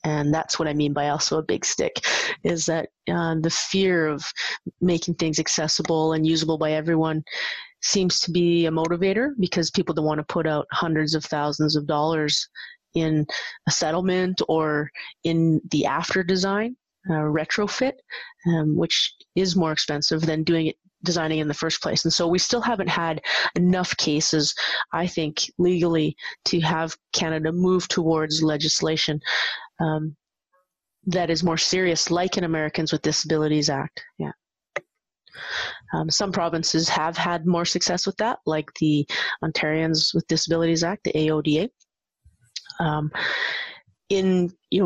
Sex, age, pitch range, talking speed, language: female, 30-49, 155-175 Hz, 150 wpm, English